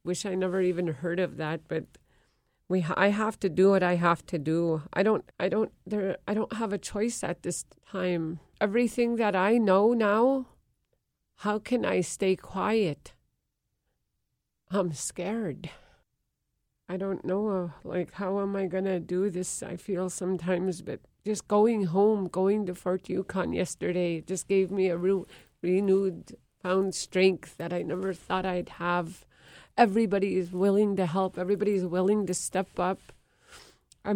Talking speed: 160 wpm